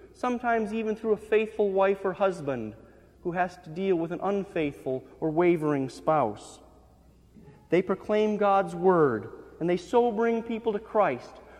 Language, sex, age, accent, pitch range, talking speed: English, male, 40-59, American, 155-220 Hz, 150 wpm